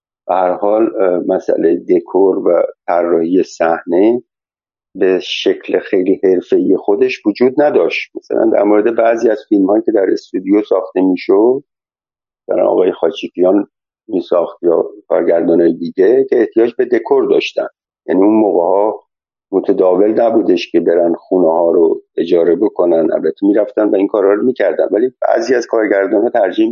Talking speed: 145 wpm